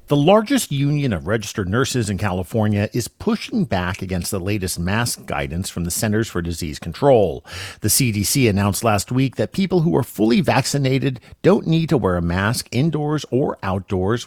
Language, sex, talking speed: English, male, 175 wpm